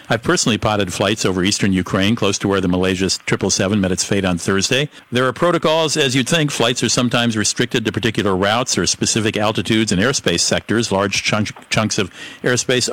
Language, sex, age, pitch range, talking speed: English, male, 50-69, 100-125 Hz, 190 wpm